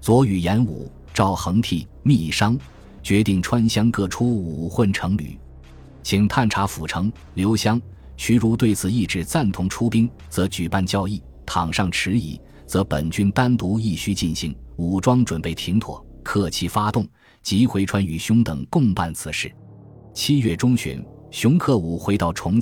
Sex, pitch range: male, 85-115 Hz